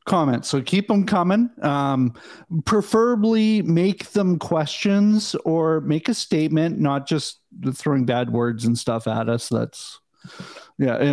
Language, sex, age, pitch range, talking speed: English, male, 40-59, 125-195 Hz, 135 wpm